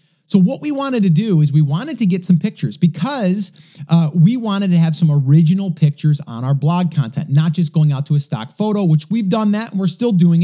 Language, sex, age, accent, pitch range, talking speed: English, male, 30-49, American, 150-180 Hz, 240 wpm